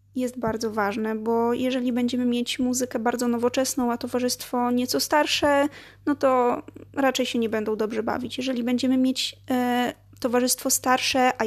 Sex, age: female, 20-39